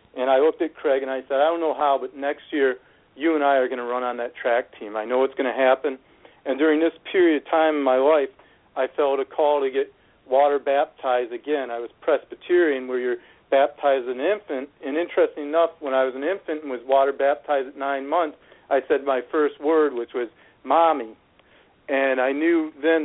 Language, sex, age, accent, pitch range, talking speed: English, male, 50-69, American, 135-165 Hz, 225 wpm